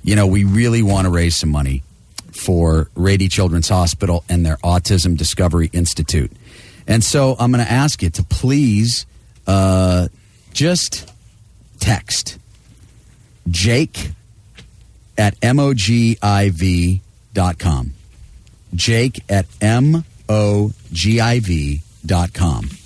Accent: American